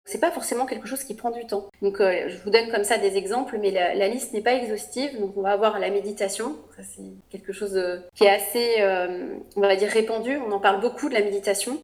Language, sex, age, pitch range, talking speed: French, female, 30-49, 200-255 Hz, 260 wpm